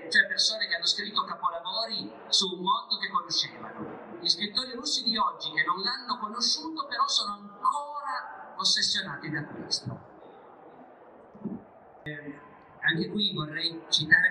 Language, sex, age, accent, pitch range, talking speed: Italian, male, 50-69, native, 155-200 Hz, 115 wpm